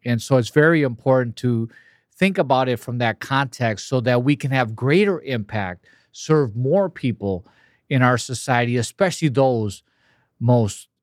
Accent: American